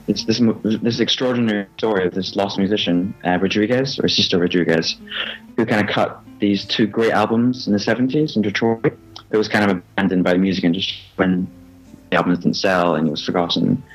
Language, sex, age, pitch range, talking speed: English, male, 20-39, 85-105 Hz, 195 wpm